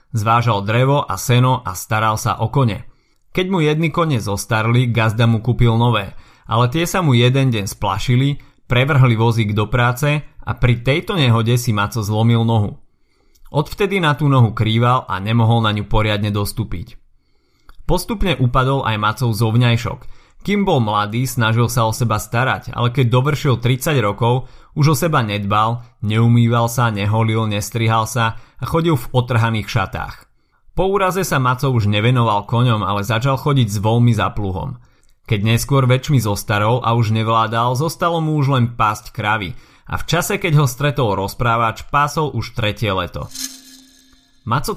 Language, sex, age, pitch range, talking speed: Slovak, male, 30-49, 110-135 Hz, 160 wpm